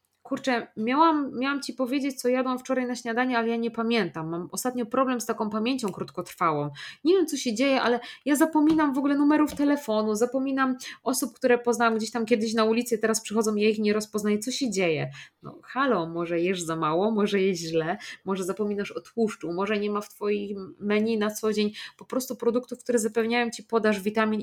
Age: 20-39